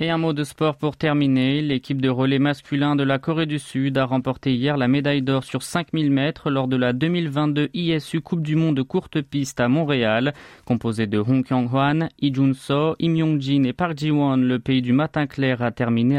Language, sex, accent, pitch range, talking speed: French, male, French, 125-155 Hz, 205 wpm